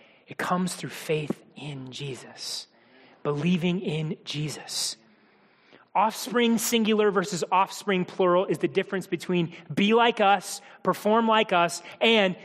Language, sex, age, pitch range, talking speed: English, male, 30-49, 175-225 Hz, 120 wpm